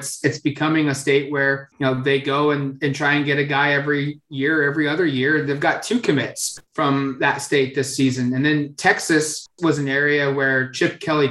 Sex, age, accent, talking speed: male, 20-39, American, 210 wpm